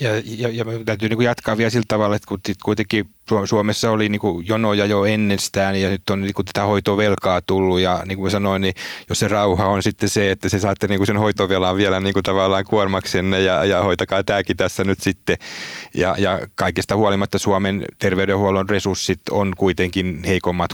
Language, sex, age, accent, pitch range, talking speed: Finnish, male, 30-49, native, 90-105 Hz, 180 wpm